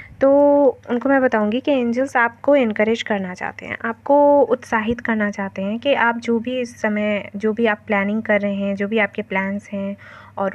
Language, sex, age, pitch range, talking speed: Hindi, female, 20-39, 200-235 Hz, 200 wpm